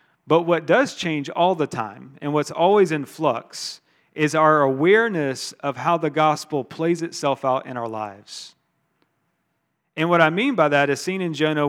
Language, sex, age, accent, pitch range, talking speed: English, male, 40-59, American, 135-165 Hz, 180 wpm